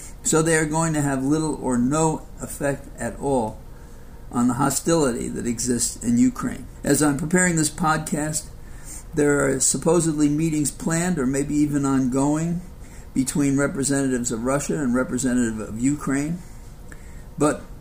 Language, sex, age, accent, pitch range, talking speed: English, male, 60-79, American, 125-150 Hz, 140 wpm